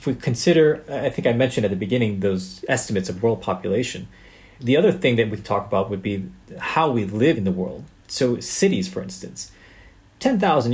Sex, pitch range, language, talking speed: male, 100-135 Hz, English, 195 wpm